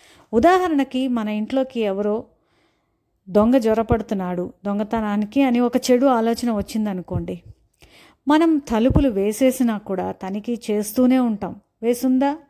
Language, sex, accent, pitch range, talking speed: Telugu, female, native, 205-255 Hz, 95 wpm